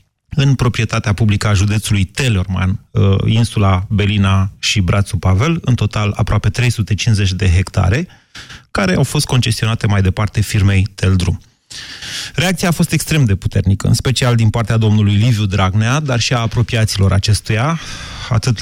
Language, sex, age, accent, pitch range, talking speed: Romanian, male, 30-49, native, 105-125 Hz, 140 wpm